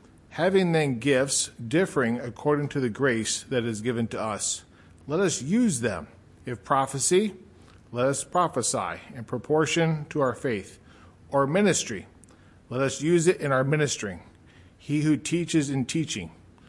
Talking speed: 145 wpm